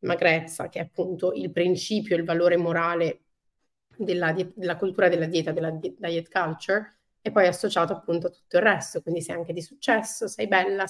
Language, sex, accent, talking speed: Italian, female, native, 175 wpm